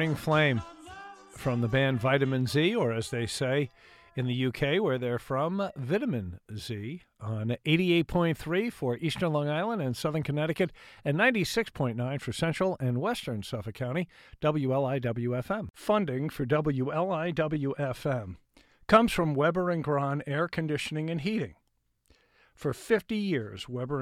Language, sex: English, male